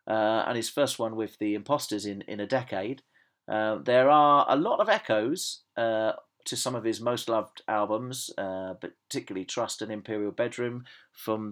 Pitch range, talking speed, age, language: 105-130 Hz, 175 wpm, 40-59, English